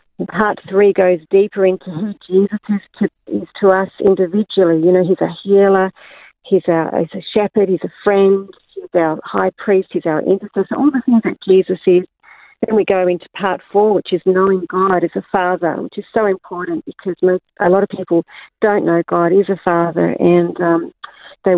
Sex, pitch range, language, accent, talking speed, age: female, 180-200 Hz, English, Australian, 195 wpm, 40-59